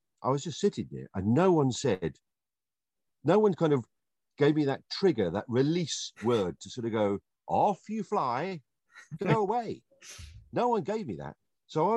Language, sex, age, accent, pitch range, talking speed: English, male, 50-69, British, 110-190 Hz, 180 wpm